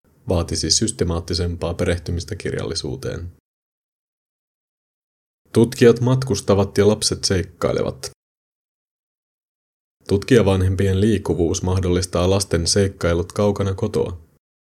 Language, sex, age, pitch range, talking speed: Finnish, male, 30-49, 85-100 Hz, 65 wpm